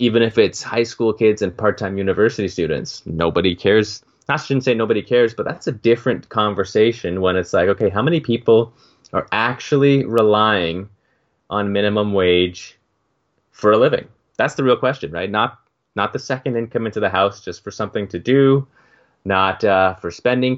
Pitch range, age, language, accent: 95-125 Hz, 20-39, English, American